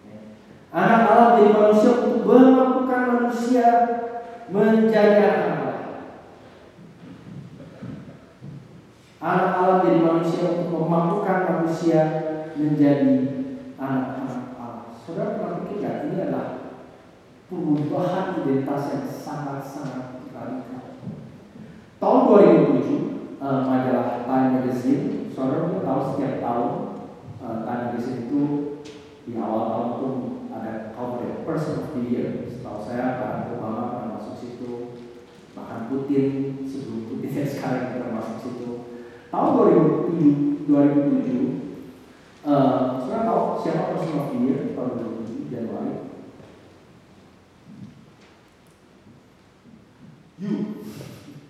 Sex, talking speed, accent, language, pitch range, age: male, 75 wpm, Indonesian, English, 130-200 Hz, 40-59